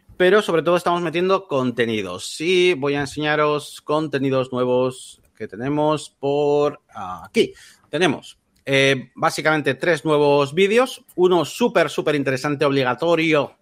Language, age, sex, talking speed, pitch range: Spanish, 30-49, male, 120 wpm, 130-170 Hz